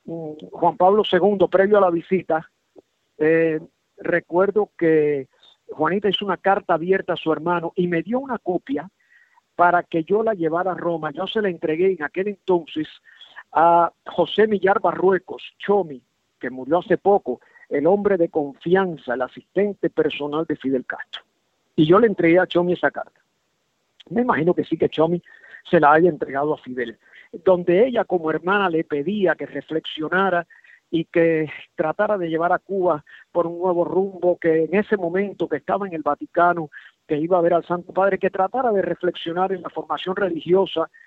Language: Spanish